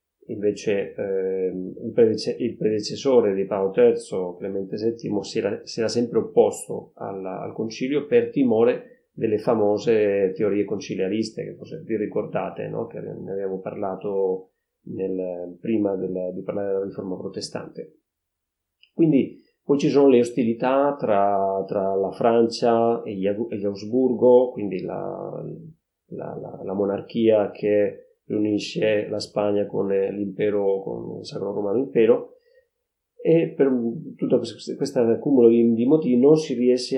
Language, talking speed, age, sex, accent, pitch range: Italian, 130 wpm, 30-49, male, native, 100-130 Hz